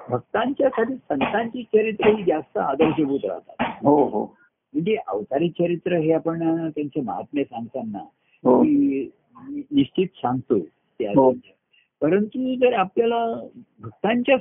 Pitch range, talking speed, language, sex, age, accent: 140-220 Hz, 95 wpm, Marathi, male, 60-79, native